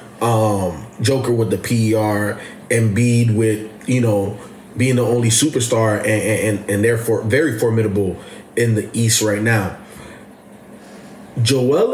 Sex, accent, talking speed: male, American, 125 wpm